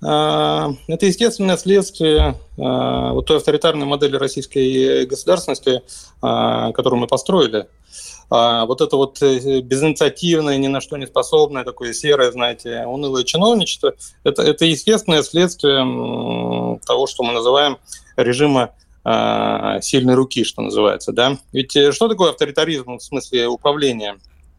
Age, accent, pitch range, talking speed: 30-49, native, 130-190 Hz, 115 wpm